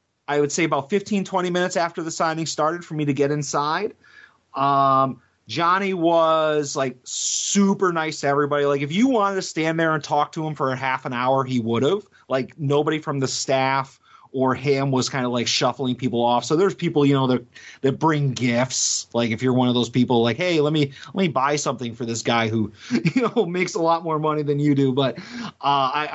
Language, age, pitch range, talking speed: English, 30-49, 135-170 Hz, 225 wpm